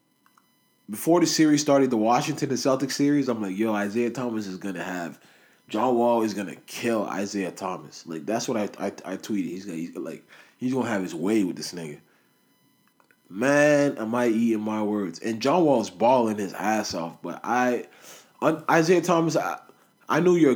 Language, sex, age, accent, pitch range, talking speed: English, male, 20-39, American, 105-140 Hz, 200 wpm